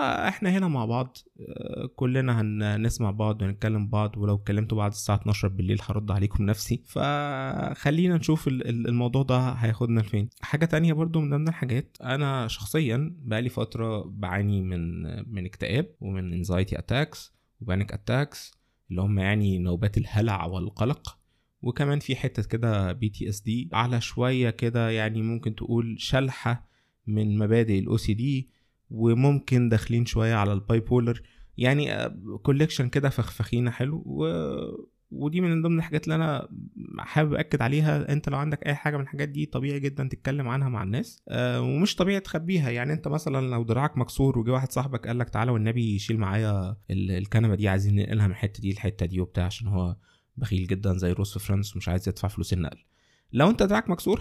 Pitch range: 105-135 Hz